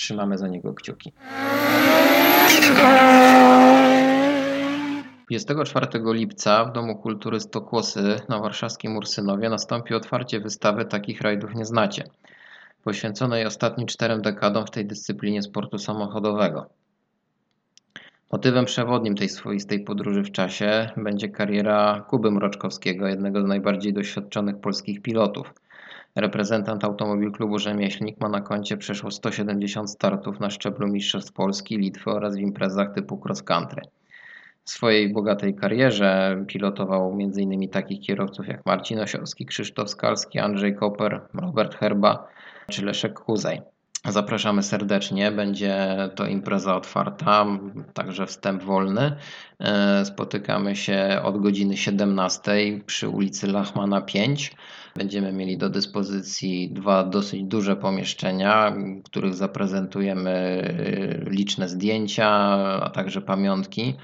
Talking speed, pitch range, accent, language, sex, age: 110 wpm, 100-110 Hz, native, Polish, male, 20-39